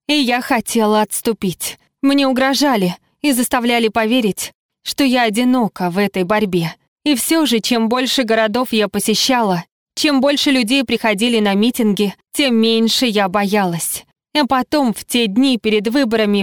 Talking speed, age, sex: 145 wpm, 20-39, female